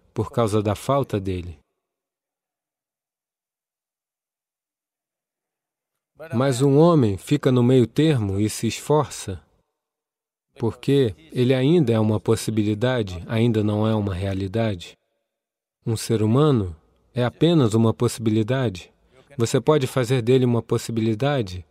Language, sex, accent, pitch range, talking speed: English, male, Brazilian, 105-130 Hz, 110 wpm